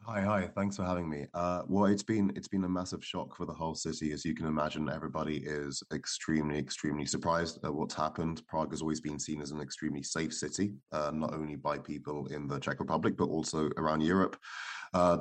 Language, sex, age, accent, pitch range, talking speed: English, male, 20-39, British, 75-95 Hz, 215 wpm